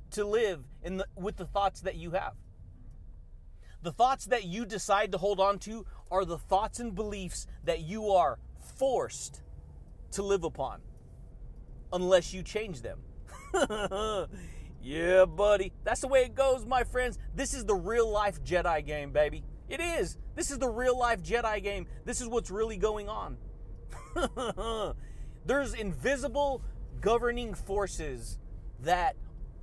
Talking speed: 140 wpm